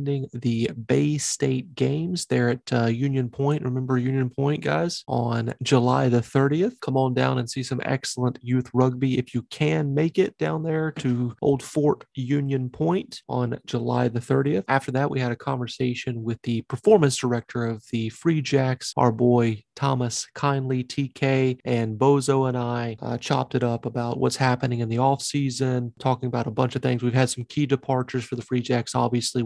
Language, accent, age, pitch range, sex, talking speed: English, American, 30-49, 120-145 Hz, male, 185 wpm